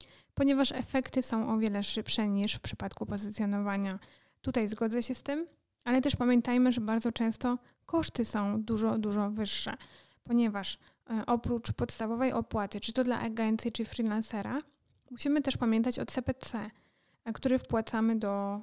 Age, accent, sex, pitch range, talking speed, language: 10-29, native, female, 220-250 Hz, 140 wpm, Polish